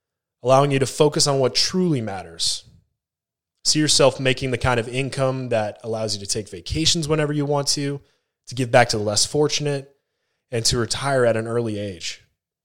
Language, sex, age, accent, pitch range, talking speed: English, male, 20-39, American, 110-135 Hz, 185 wpm